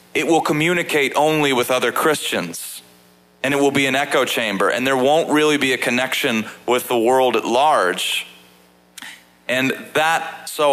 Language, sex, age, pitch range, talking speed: English, male, 30-49, 110-150 Hz, 160 wpm